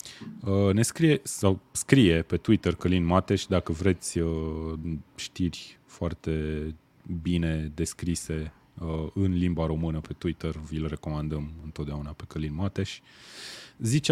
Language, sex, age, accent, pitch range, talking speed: Romanian, male, 20-39, native, 85-110 Hz, 110 wpm